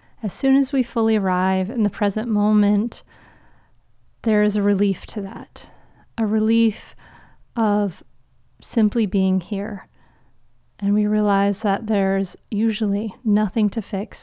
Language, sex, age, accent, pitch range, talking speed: English, female, 30-49, American, 200-230 Hz, 130 wpm